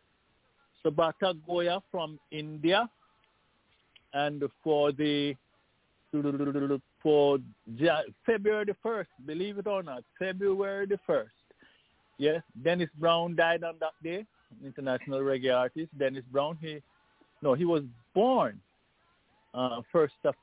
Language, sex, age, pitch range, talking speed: English, male, 50-69, 130-165 Hz, 110 wpm